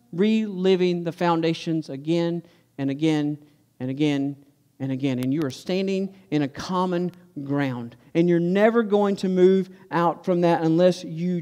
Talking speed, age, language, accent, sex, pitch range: 150 wpm, 50-69, English, American, male, 165-200 Hz